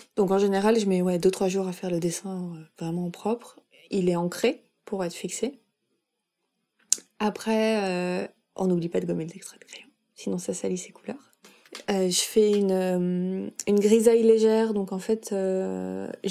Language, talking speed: French, 175 wpm